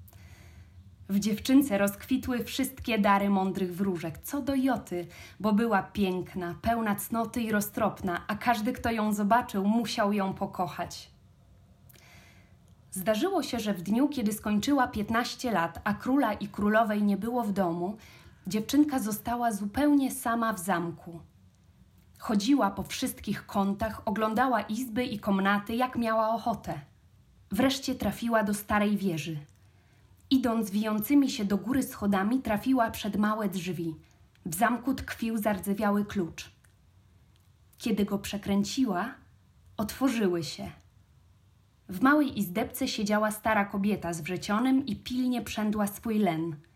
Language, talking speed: Polish, 125 wpm